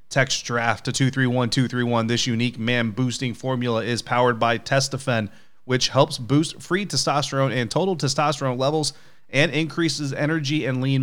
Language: English